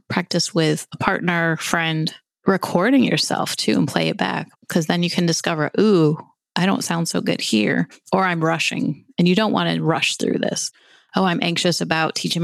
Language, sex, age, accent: English, female, 30-49, American